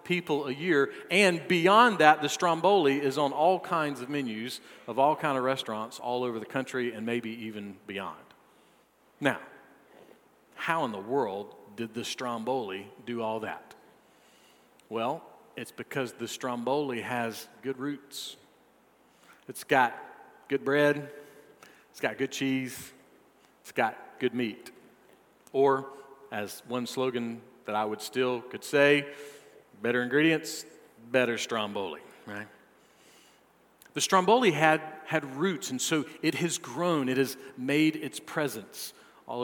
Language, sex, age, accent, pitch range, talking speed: English, male, 40-59, American, 120-155 Hz, 135 wpm